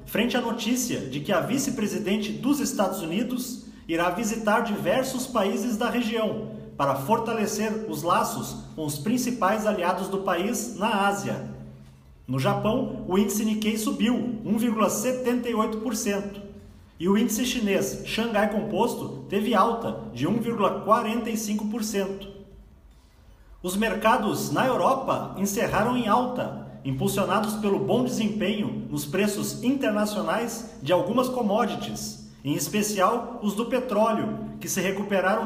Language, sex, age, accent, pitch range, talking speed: Portuguese, male, 40-59, Brazilian, 185-230 Hz, 120 wpm